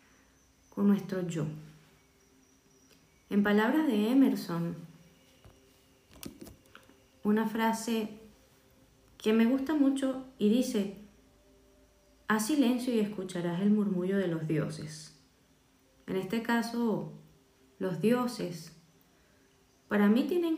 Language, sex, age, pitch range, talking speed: Spanish, female, 20-39, 165-235 Hz, 95 wpm